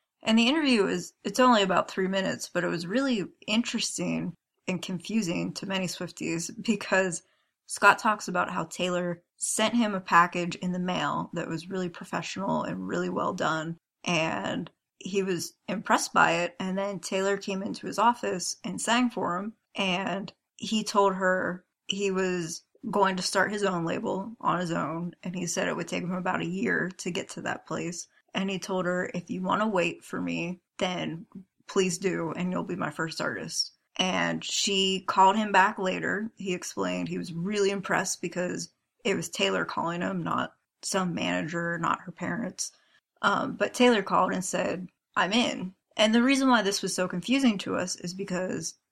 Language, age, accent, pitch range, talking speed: English, 20-39, American, 175-210 Hz, 185 wpm